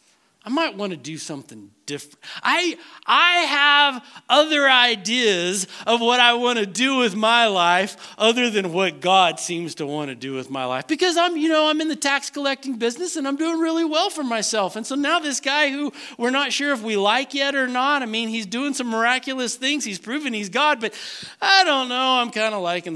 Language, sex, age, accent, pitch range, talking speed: English, male, 40-59, American, 185-285 Hz, 220 wpm